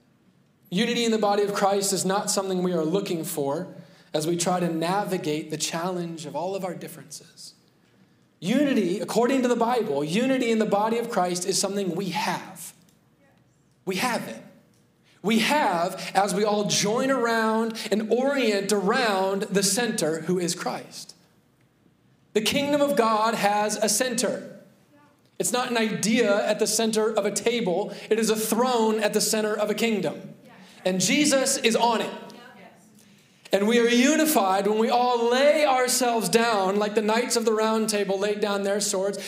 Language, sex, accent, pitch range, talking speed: English, male, American, 180-230 Hz, 170 wpm